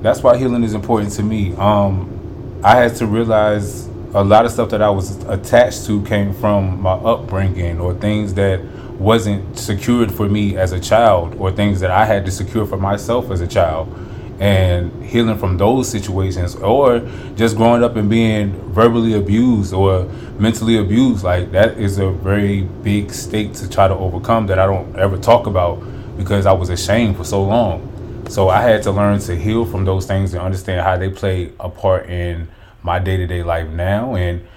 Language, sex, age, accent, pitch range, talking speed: English, male, 20-39, American, 95-110 Hz, 195 wpm